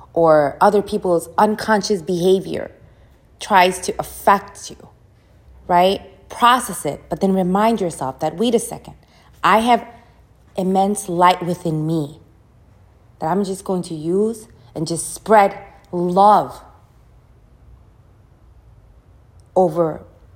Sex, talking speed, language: female, 110 wpm, English